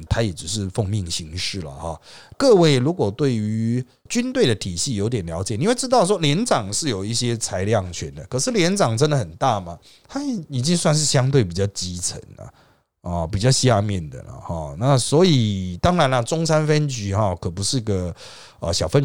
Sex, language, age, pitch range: male, Chinese, 30-49, 100-155 Hz